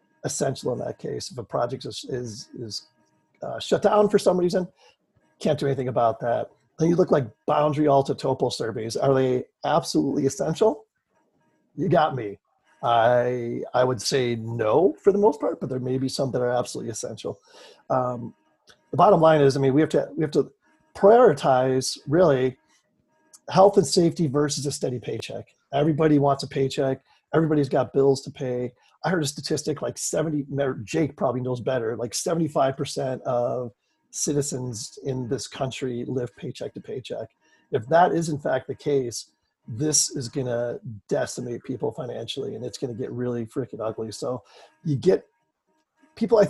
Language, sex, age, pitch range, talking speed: English, male, 30-49, 125-155 Hz, 175 wpm